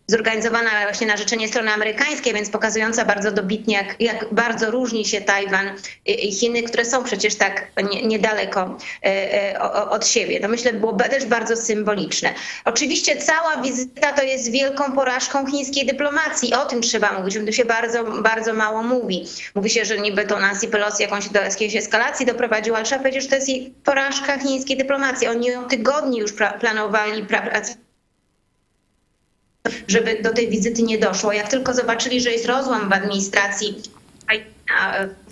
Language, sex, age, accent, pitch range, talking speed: Polish, female, 30-49, native, 210-245 Hz, 160 wpm